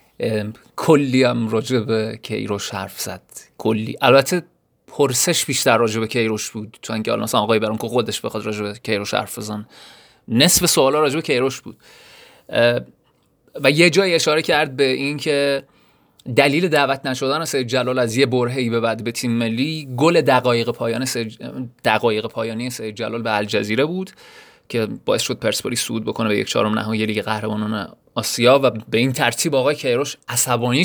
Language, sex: Persian, male